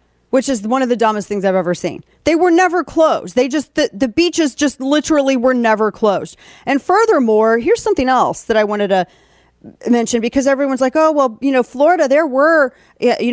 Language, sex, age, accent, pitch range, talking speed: English, female, 40-59, American, 210-275 Hz, 205 wpm